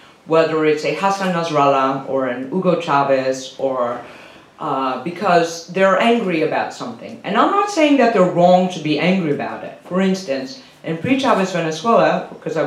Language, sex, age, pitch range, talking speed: English, female, 40-59, 140-180 Hz, 165 wpm